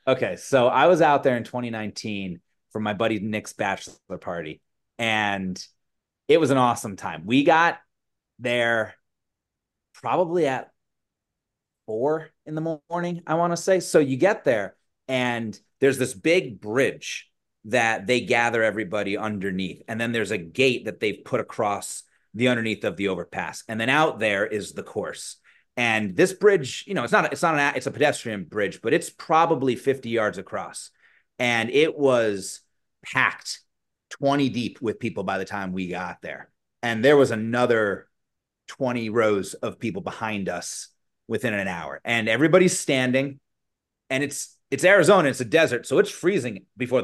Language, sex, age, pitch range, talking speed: English, male, 30-49, 110-145 Hz, 165 wpm